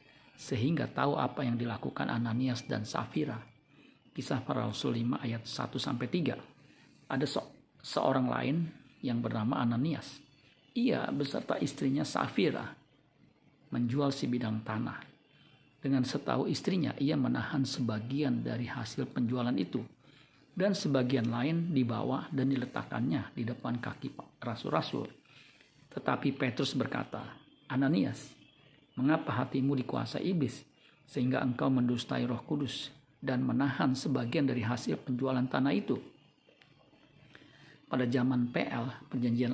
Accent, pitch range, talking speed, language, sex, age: native, 125-145 Hz, 115 wpm, Indonesian, male, 50-69